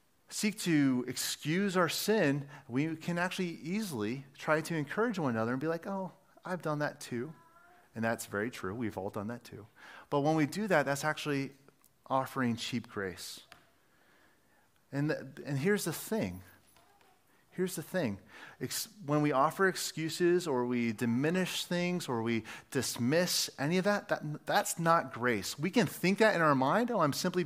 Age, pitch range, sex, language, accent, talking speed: 30-49, 135-185 Hz, male, English, American, 175 wpm